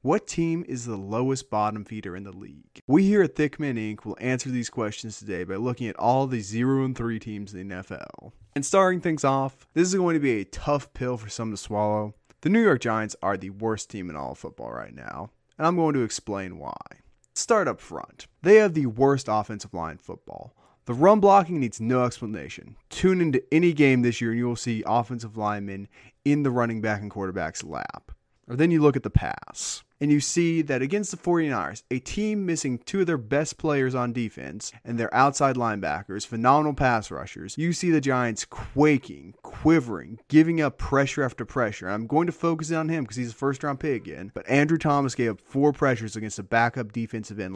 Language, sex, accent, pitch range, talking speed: English, male, American, 110-145 Hz, 210 wpm